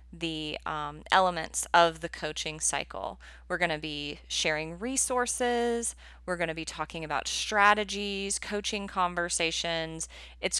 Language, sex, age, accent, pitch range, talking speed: English, female, 30-49, American, 155-195 Hz, 130 wpm